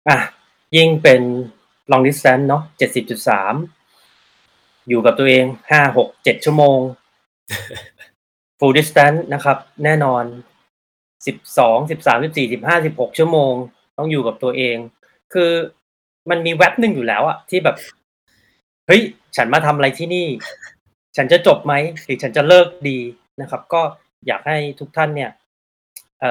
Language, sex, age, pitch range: Thai, male, 20-39, 130-160 Hz